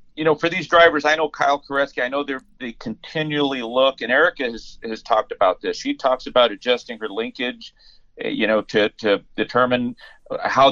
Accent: American